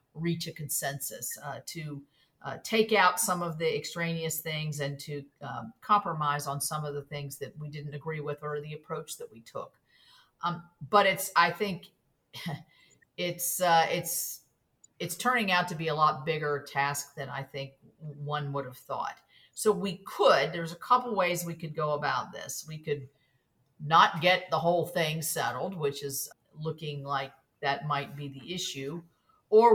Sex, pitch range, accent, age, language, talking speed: female, 145-180 Hz, American, 50-69, English, 175 wpm